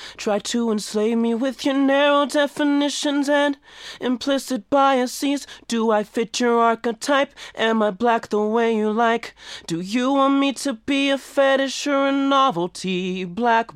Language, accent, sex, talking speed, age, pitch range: English, American, male, 155 wpm, 20-39, 210-275 Hz